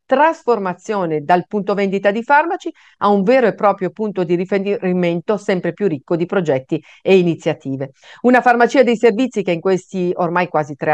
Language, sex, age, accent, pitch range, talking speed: Italian, female, 50-69, native, 160-215 Hz, 170 wpm